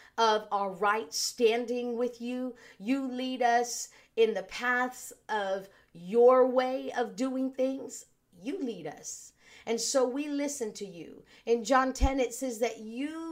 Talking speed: 155 wpm